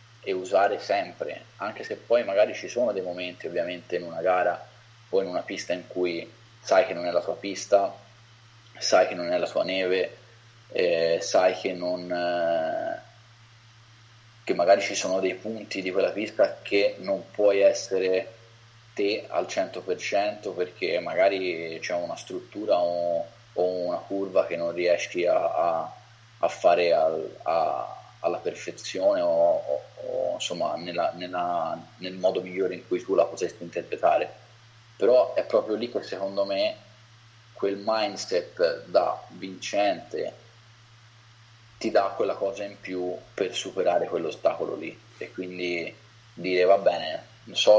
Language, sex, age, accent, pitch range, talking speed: Italian, male, 20-39, native, 95-115 Hz, 145 wpm